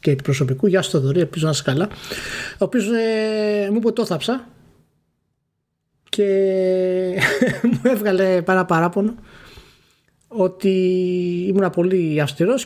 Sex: male